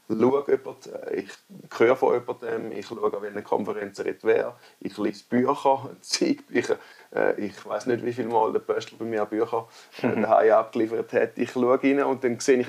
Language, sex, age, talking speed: German, male, 30-49, 185 wpm